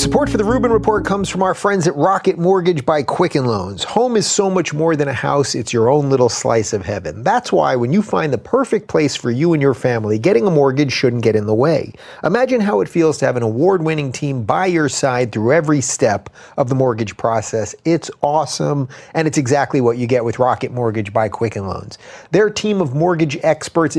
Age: 30-49